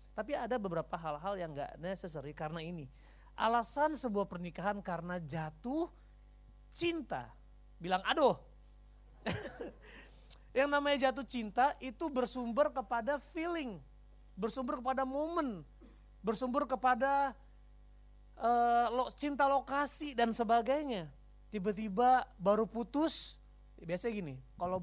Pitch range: 190-275 Hz